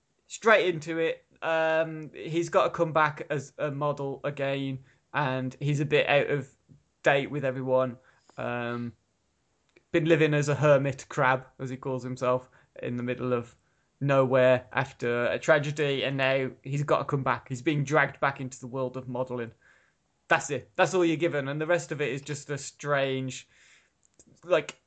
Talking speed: 175 wpm